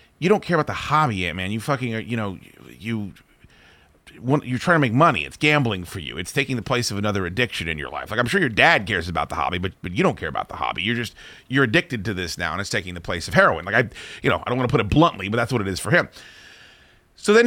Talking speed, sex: 290 wpm, male